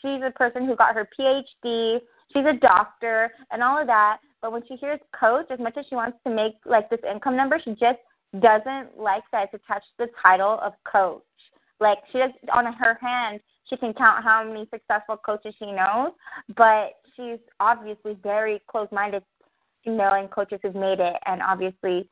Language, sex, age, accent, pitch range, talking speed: English, female, 20-39, American, 210-255 Hz, 195 wpm